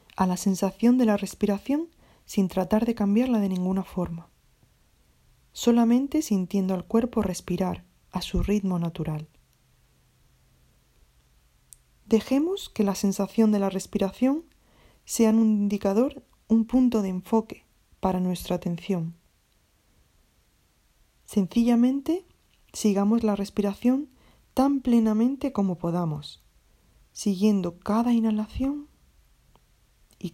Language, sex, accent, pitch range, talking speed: Spanish, female, Spanish, 170-230 Hz, 100 wpm